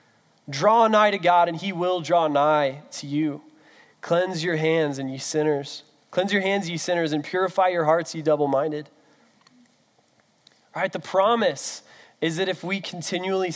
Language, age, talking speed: English, 20-39, 165 wpm